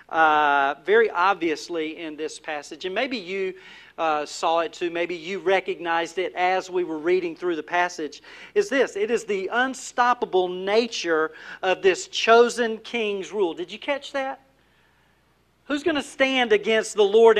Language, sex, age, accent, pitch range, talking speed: English, male, 40-59, American, 195-295 Hz, 160 wpm